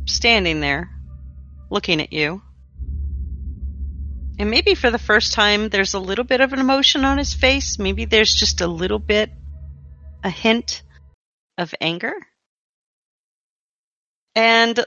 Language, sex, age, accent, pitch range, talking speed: English, female, 40-59, American, 160-195 Hz, 130 wpm